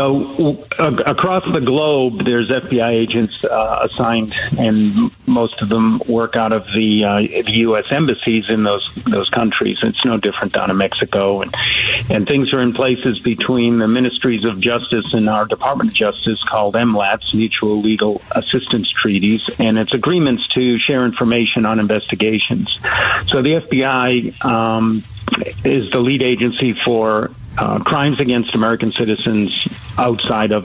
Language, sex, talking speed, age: English, male, 155 wpm, 50-69